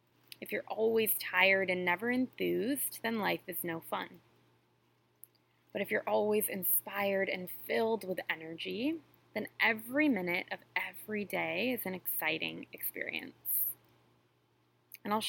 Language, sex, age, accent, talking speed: English, female, 20-39, American, 130 wpm